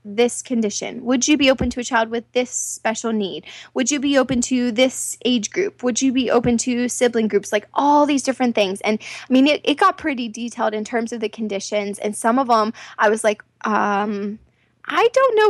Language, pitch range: English, 230-345 Hz